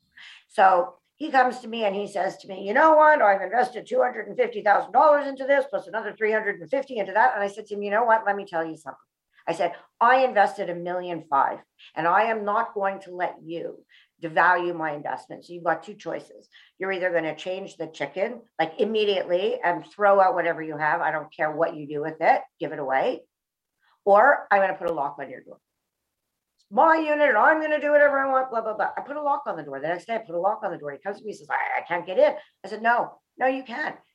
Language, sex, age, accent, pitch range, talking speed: English, female, 50-69, American, 175-240 Hz, 245 wpm